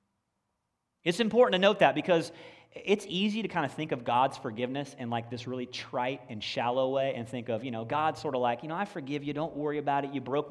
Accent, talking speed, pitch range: American, 245 wpm, 120-165 Hz